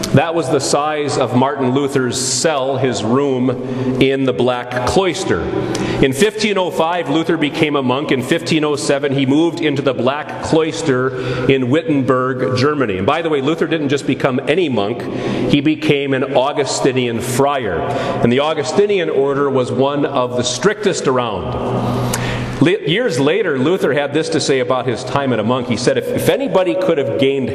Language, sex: English, male